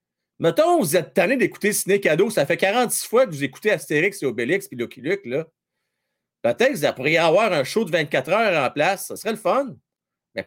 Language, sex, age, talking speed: French, male, 40-59, 220 wpm